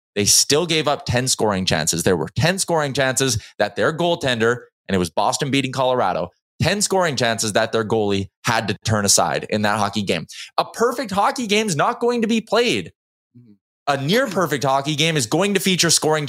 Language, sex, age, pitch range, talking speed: English, male, 20-39, 105-150 Hz, 200 wpm